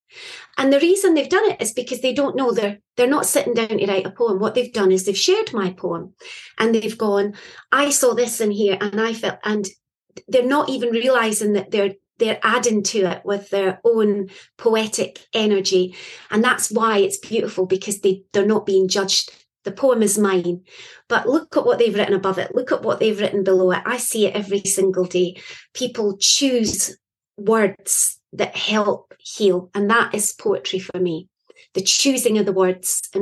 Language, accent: English, British